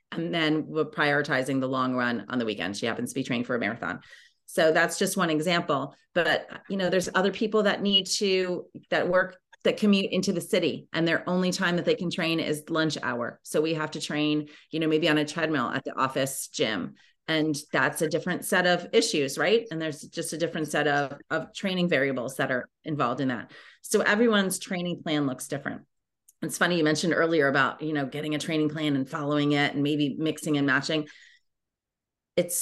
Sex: female